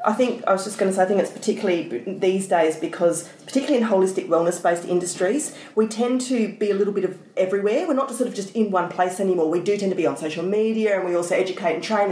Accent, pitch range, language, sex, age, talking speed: Australian, 185-225 Hz, English, female, 30-49, 265 wpm